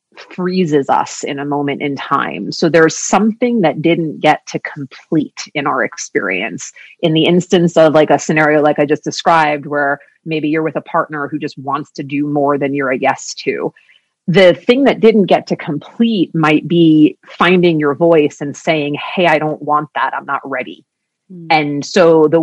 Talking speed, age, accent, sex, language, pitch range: 190 wpm, 30-49, American, female, English, 145-170 Hz